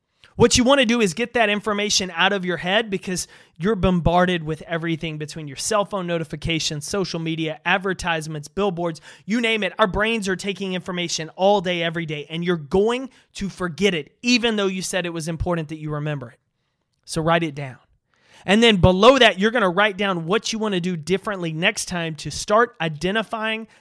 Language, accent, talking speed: English, American, 200 wpm